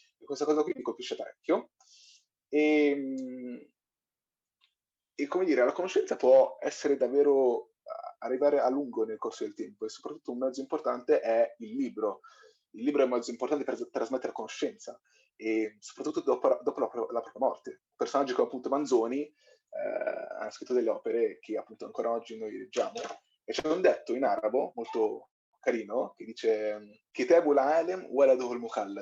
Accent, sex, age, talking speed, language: native, male, 20-39, 155 wpm, Italian